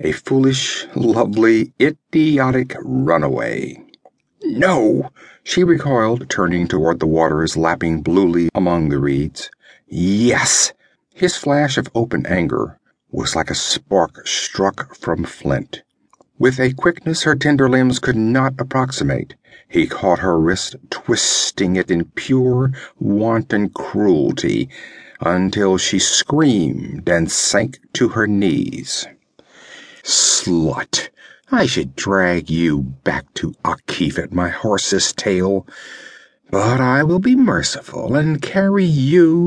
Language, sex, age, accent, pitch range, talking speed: English, male, 50-69, American, 90-135 Hz, 115 wpm